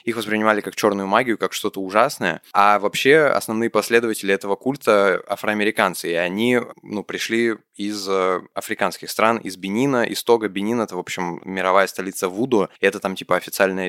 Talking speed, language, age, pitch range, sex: 165 wpm, Russian, 20-39, 95-110 Hz, male